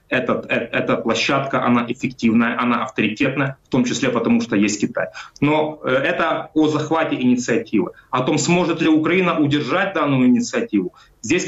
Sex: male